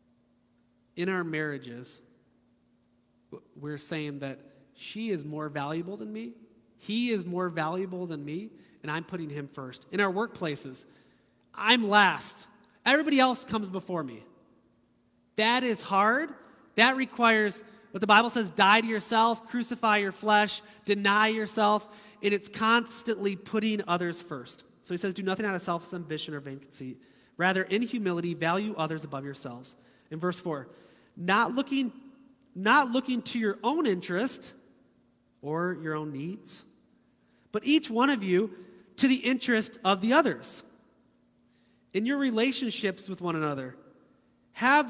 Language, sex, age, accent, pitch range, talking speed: English, male, 30-49, American, 145-225 Hz, 145 wpm